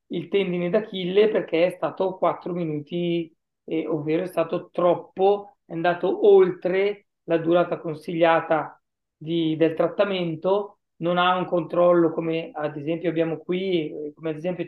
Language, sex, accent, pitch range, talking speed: Italian, male, native, 165-185 Hz, 145 wpm